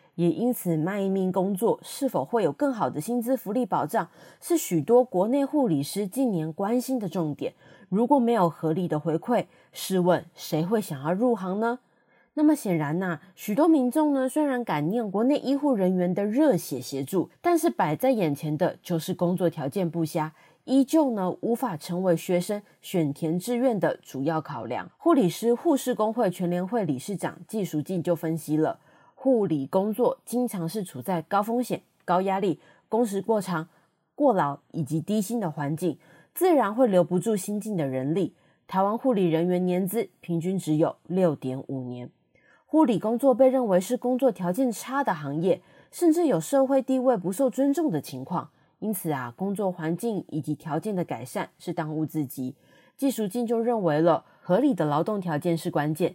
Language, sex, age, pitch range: Chinese, female, 20-39, 165-245 Hz